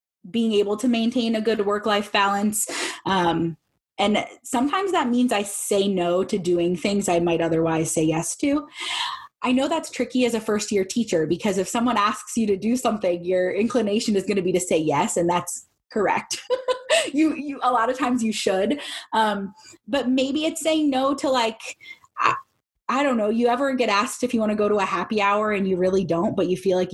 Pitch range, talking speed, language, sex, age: 185-250 Hz, 210 wpm, English, female, 20-39